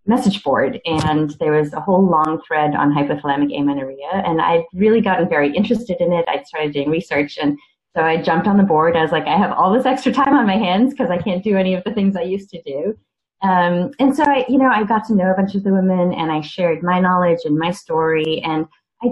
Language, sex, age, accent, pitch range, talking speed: English, female, 30-49, American, 160-225 Hz, 255 wpm